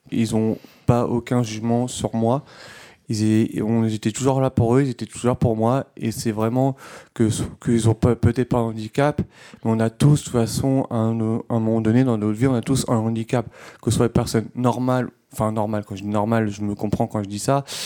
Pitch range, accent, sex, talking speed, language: 110-130 Hz, French, male, 230 wpm, French